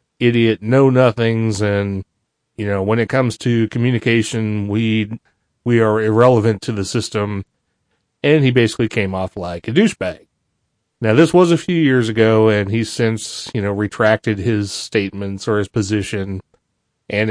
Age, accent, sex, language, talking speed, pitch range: 30-49, American, male, English, 155 wpm, 105-120 Hz